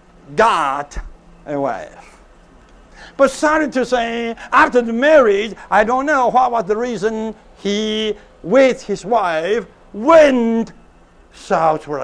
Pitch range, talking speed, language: 200-270 Hz, 115 wpm, English